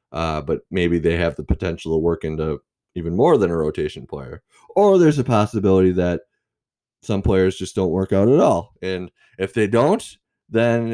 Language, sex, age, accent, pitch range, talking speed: English, male, 20-39, American, 85-110 Hz, 185 wpm